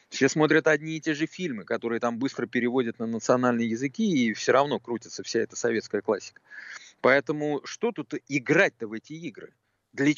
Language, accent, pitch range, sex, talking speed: Russian, native, 125-175 Hz, male, 175 wpm